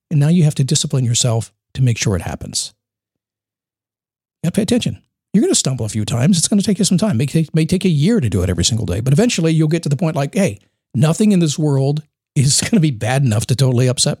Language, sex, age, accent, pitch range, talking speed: English, male, 50-69, American, 125-180 Hz, 260 wpm